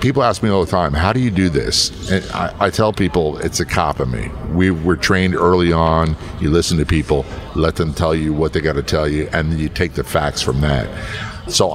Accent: American